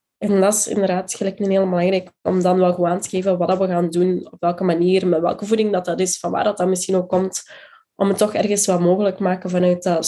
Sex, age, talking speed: female, 20-39, 270 wpm